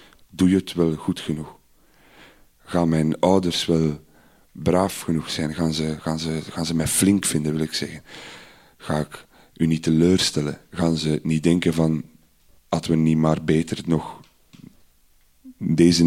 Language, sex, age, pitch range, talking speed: Dutch, male, 40-59, 80-85 Hz, 155 wpm